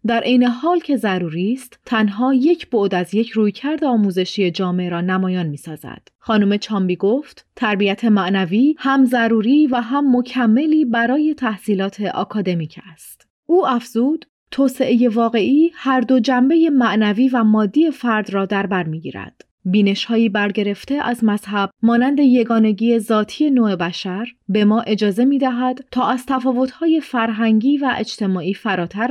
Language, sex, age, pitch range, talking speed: Persian, female, 30-49, 200-260 Hz, 140 wpm